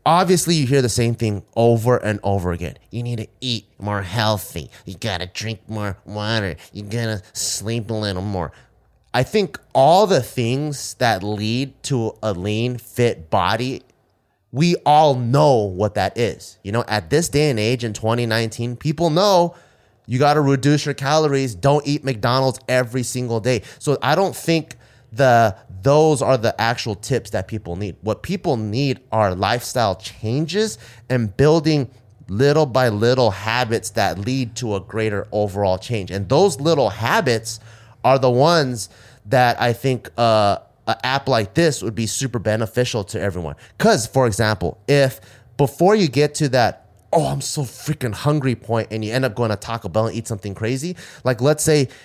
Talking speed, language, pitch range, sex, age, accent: 180 wpm, English, 110-140 Hz, male, 30-49, American